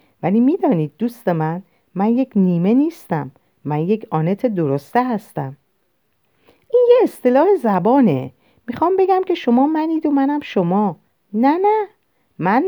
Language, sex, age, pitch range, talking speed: Persian, female, 50-69, 175-275 Hz, 130 wpm